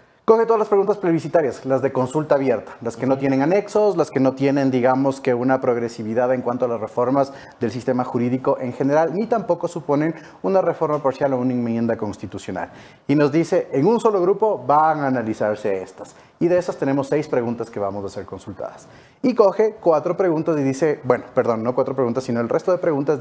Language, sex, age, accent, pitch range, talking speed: English, male, 30-49, Mexican, 125-170 Hz, 205 wpm